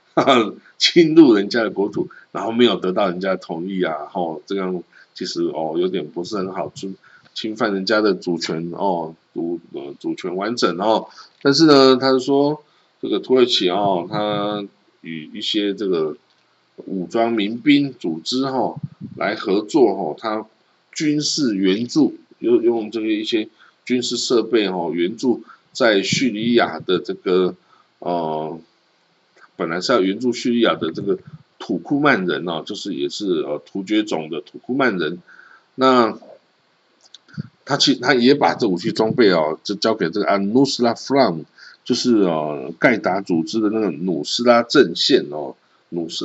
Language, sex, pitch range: Chinese, male, 95-160 Hz